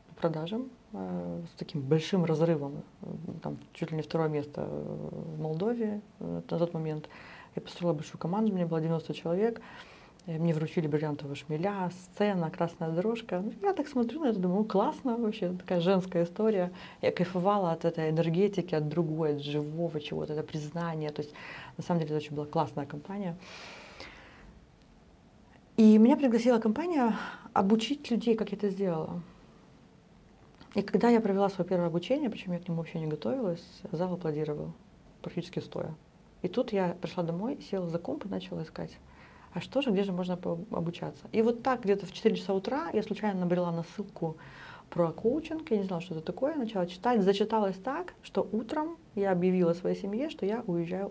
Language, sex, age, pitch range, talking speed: Russian, female, 30-49, 160-210 Hz, 170 wpm